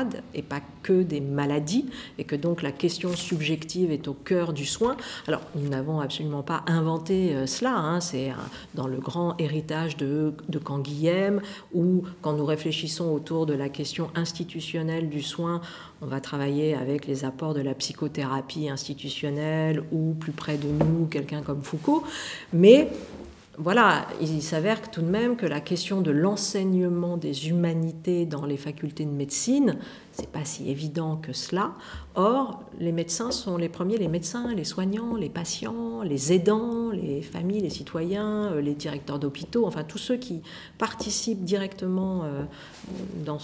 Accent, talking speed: French, 160 wpm